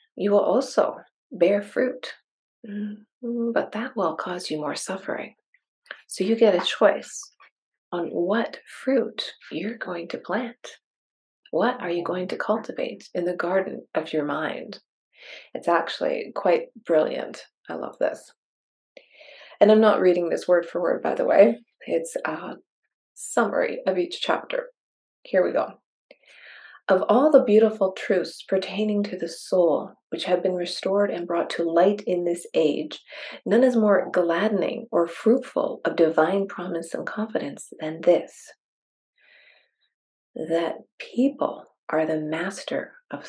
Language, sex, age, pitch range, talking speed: English, female, 30-49, 175-255 Hz, 140 wpm